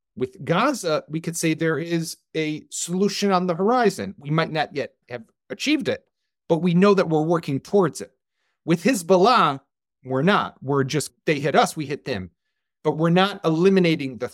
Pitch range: 130-170 Hz